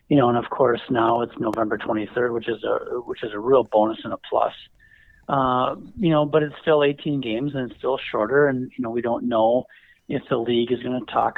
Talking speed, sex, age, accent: 235 wpm, male, 40-59, American